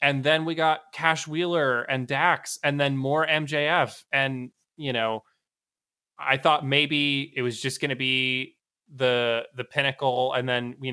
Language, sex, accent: English, male, American